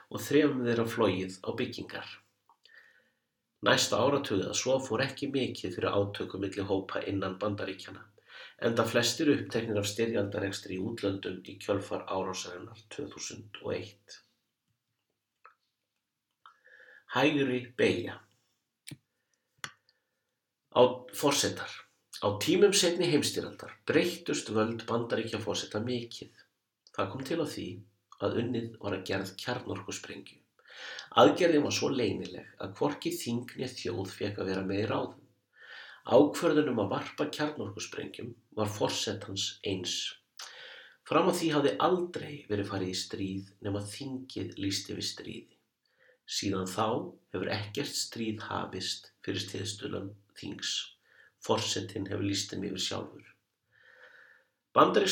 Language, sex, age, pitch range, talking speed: English, male, 50-69, 100-130 Hz, 115 wpm